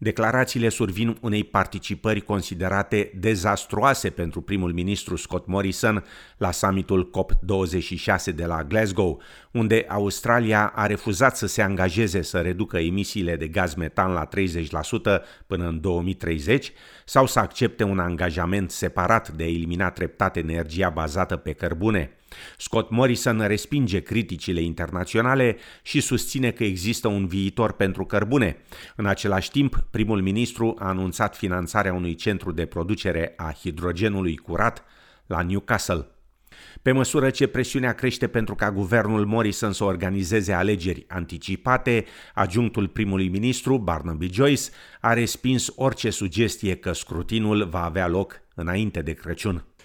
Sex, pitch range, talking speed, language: male, 90-110 Hz, 130 wpm, Romanian